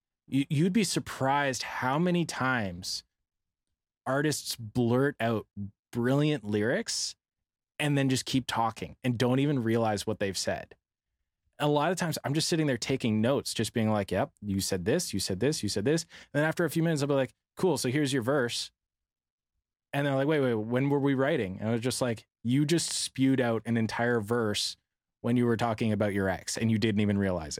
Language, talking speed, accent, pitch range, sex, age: English, 200 wpm, American, 110-145 Hz, male, 20-39